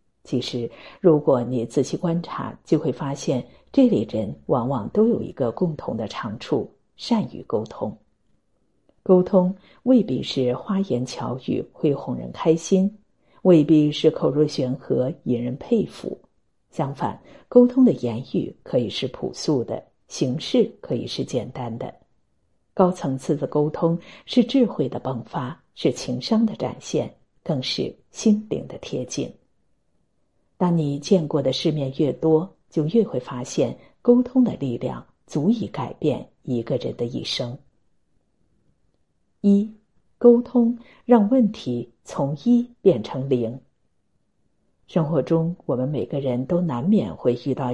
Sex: female